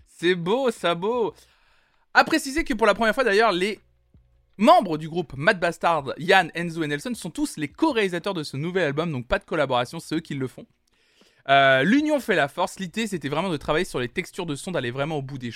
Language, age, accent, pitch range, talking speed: French, 20-39, French, 140-195 Hz, 230 wpm